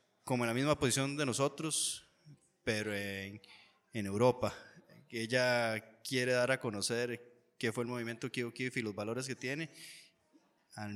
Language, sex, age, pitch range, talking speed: Spanish, male, 20-39, 110-130 Hz, 155 wpm